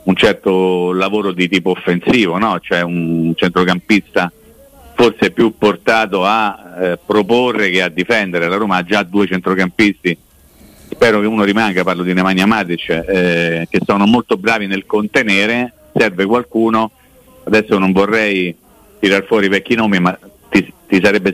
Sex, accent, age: male, native, 40-59